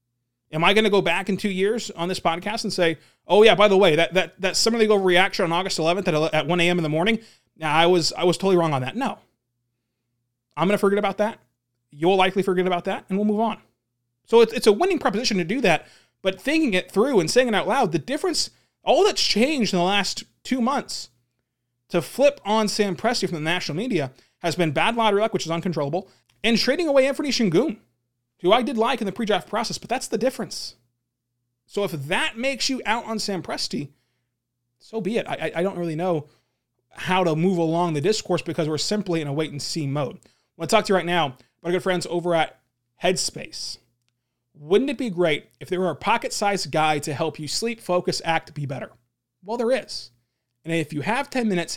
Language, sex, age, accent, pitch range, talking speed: English, male, 30-49, American, 145-210 Hz, 225 wpm